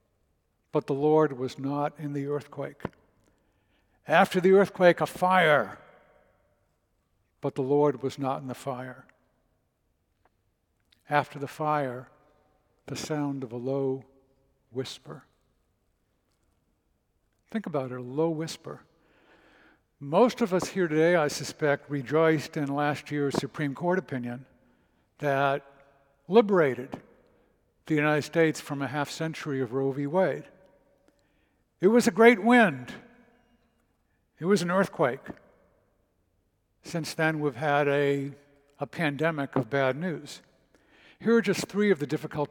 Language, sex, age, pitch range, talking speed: English, male, 60-79, 135-165 Hz, 125 wpm